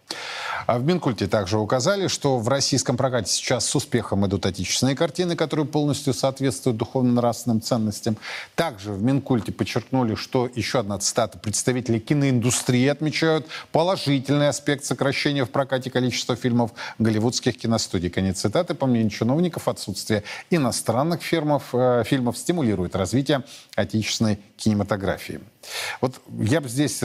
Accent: native